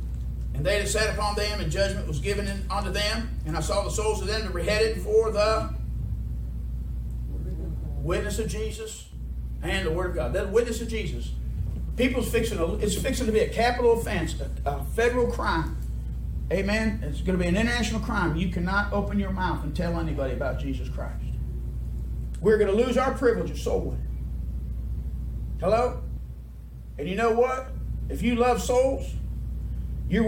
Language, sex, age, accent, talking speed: English, male, 40-59, American, 170 wpm